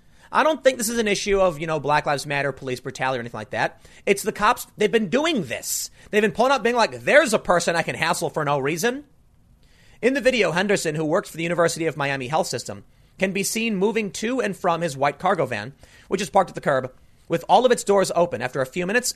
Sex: male